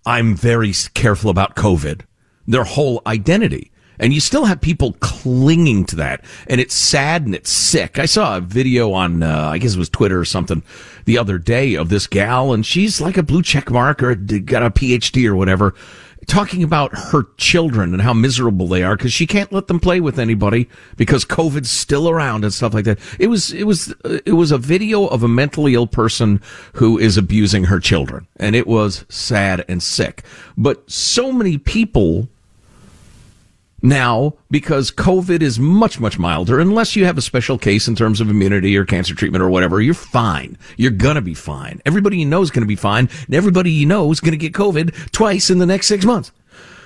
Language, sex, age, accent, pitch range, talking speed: English, male, 50-69, American, 100-155 Hz, 205 wpm